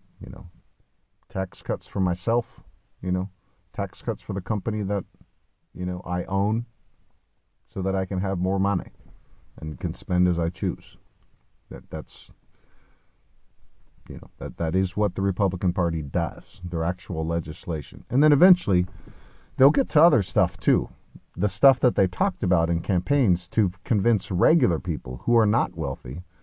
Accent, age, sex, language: American, 50-69, male, English